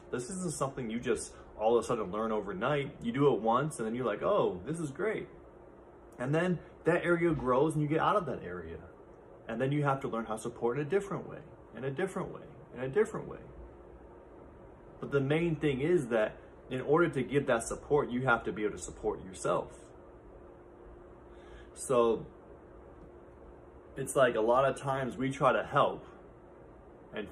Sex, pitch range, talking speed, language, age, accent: male, 110-150 Hz, 195 wpm, English, 20-39, American